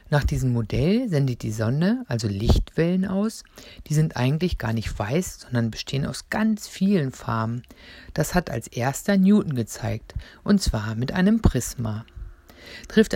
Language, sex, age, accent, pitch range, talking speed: German, female, 60-79, German, 115-180 Hz, 150 wpm